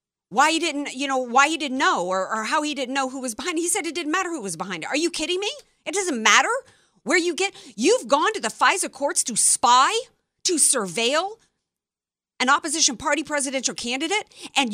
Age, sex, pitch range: 50-69, female, 250-370 Hz